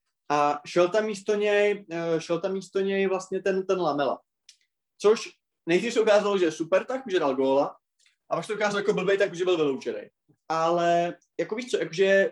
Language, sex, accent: Czech, male, native